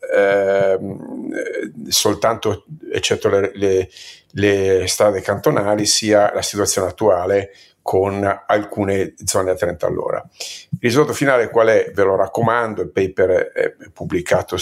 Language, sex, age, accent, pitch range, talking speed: Italian, male, 50-69, native, 100-150 Hz, 125 wpm